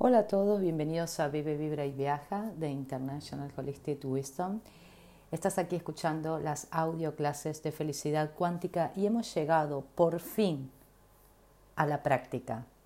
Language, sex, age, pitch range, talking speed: Spanish, female, 40-59, 140-180 Hz, 140 wpm